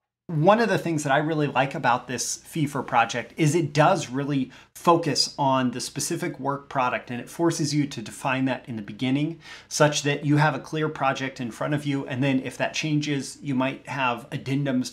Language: English